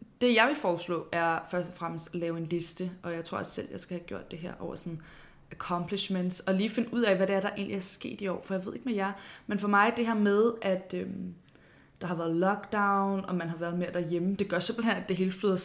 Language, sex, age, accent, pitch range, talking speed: Danish, female, 20-39, native, 170-195 Hz, 270 wpm